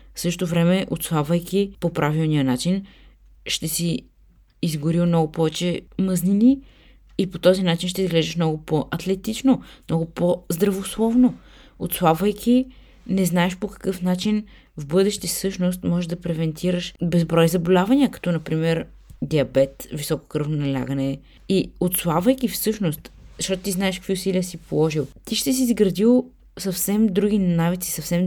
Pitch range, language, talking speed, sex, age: 155-195 Hz, Bulgarian, 130 wpm, female, 20-39